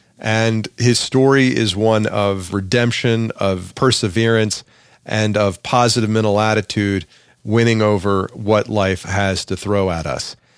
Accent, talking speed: American, 130 wpm